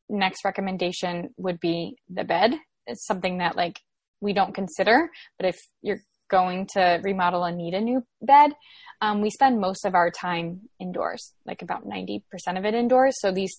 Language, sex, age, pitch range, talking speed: English, female, 10-29, 185-230 Hz, 175 wpm